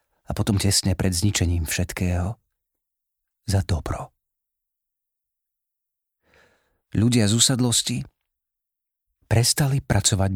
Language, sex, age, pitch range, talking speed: Slovak, male, 40-59, 95-130 Hz, 75 wpm